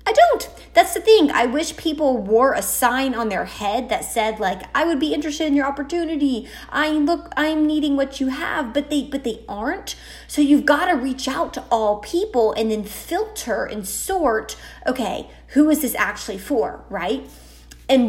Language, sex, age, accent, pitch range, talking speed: English, female, 20-39, American, 195-275 Hz, 190 wpm